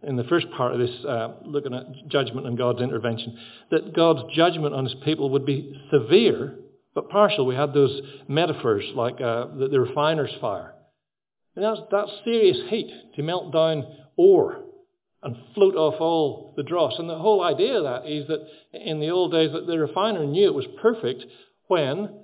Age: 60-79